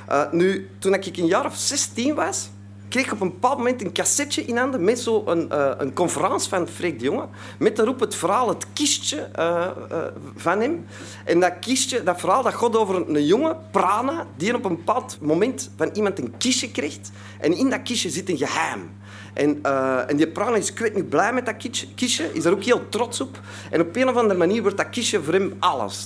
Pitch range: 135-220 Hz